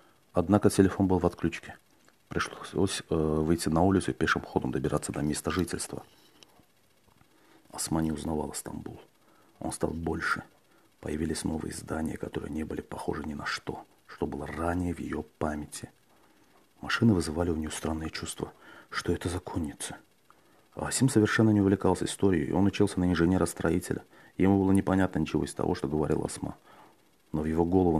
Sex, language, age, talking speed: male, Russian, 40-59, 150 wpm